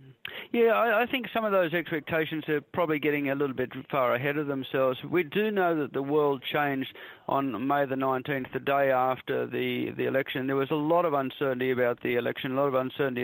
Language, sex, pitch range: English, male, 130-145 Hz